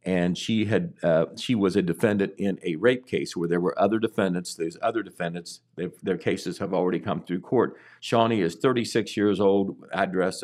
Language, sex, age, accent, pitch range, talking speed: English, male, 50-69, American, 90-115 Hz, 190 wpm